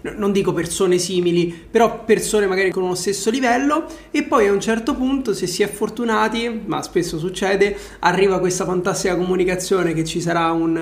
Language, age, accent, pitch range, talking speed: Italian, 20-39, native, 165-195 Hz, 175 wpm